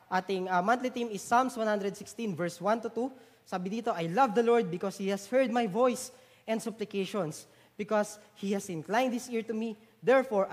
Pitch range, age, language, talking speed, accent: 180-225 Hz, 20-39, English, 195 wpm, Filipino